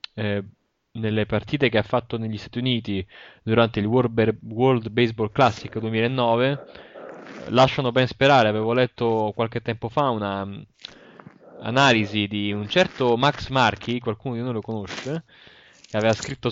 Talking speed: 150 wpm